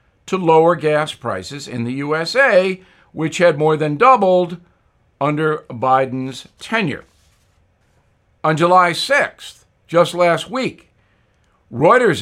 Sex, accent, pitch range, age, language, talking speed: male, American, 135-195 Hz, 60-79, English, 110 wpm